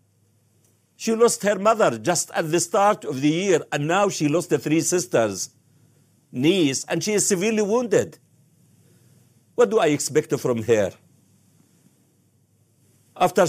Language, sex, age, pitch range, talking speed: English, male, 60-79, 120-190 Hz, 140 wpm